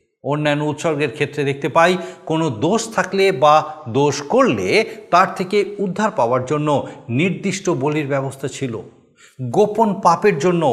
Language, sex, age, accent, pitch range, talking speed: Bengali, male, 50-69, native, 130-180 Hz, 130 wpm